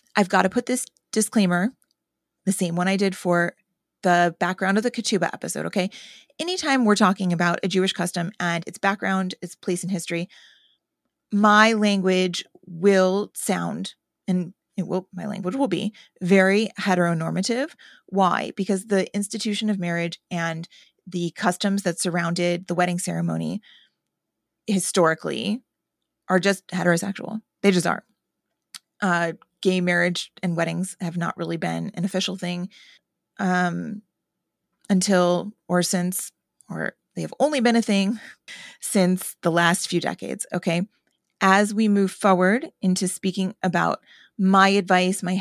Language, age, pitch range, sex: English, 30-49, 175-205 Hz, female